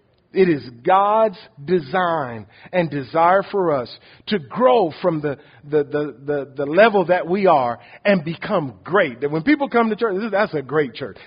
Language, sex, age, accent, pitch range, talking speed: English, male, 50-69, American, 130-165 Hz, 175 wpm